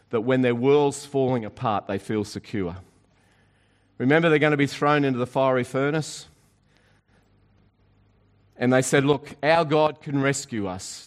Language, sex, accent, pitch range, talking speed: English, male, Australian, 105-150 Hz, 150 wpm